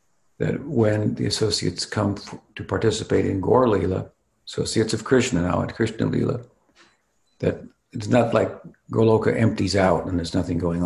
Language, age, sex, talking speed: English, 60-79, male, 160 wpm